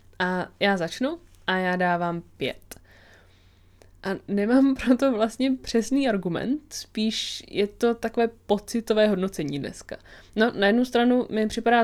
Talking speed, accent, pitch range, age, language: 130 wpm, native, 180-225 Hz, 20-39, Czech